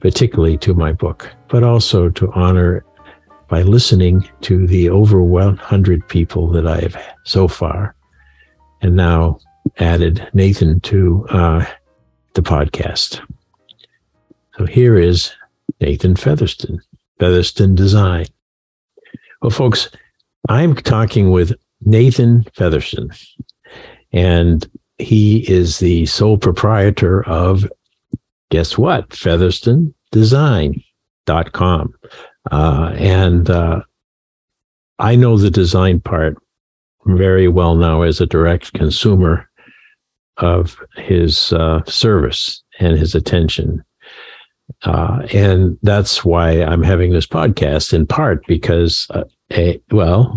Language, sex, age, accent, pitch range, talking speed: English, male, 60-79, American, 85-100 Hz, 100 wpm